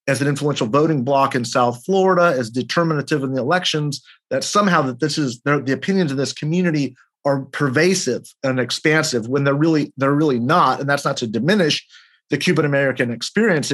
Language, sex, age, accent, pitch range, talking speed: English, male, 40-59, American, 120-155 Hz, 180 wpm